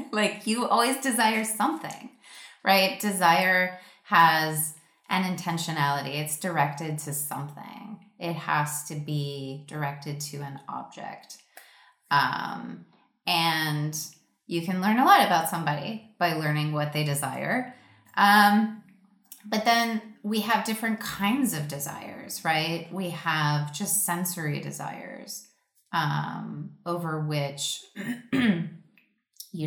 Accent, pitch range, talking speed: American, 150-200 Hz, 110 wpm